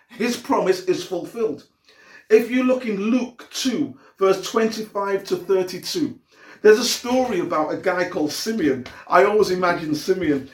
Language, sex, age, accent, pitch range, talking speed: English, male, 50-69, British, 185-255 Hz, 150 wpm